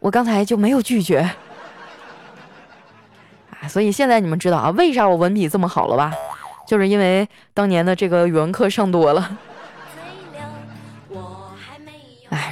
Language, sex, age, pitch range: Chinese, female, 20-39, 180-240 Hz